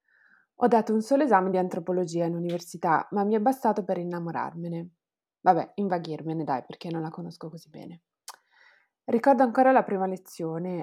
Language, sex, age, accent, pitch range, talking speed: Italian, female, 20-39, native, 175-225 Hz, 160 wpm